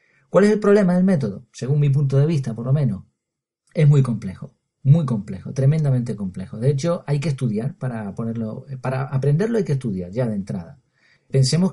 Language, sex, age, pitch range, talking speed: Spanish, male, 40-59, 130-170 Hz, 190 wpm